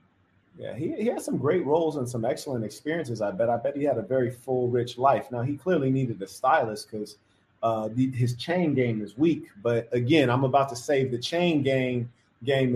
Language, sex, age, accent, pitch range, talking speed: English, male, 30-49, American, 115-145 Hz, 215 wpm